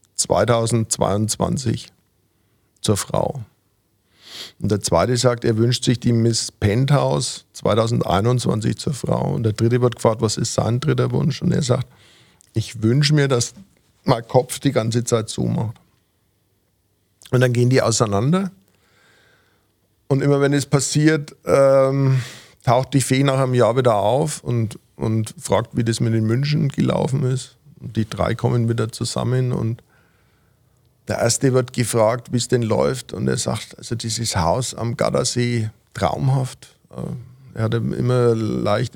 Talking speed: 150 wpm